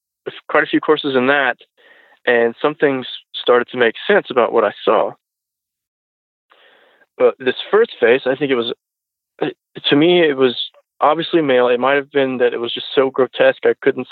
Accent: American